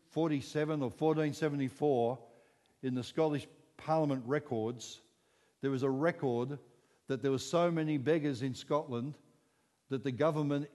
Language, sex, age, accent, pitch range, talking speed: English, male, 60-79, Australian, 135-160 Hz, 130 wpm